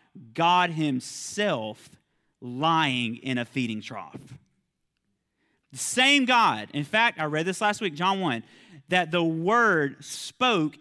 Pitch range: 155-230 Hz